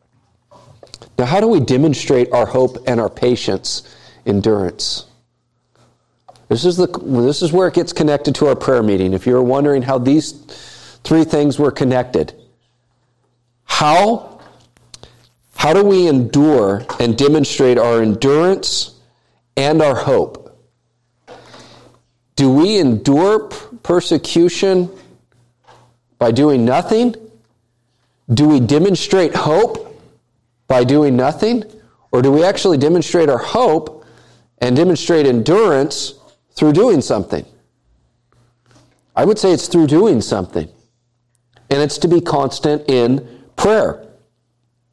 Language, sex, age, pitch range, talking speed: English, male, 40-59, 120-155 Hz, 110 wpm